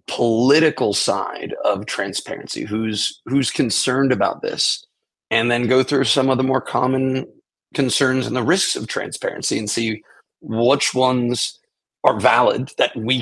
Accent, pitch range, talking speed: American, 105-135 Hz, 145 wpm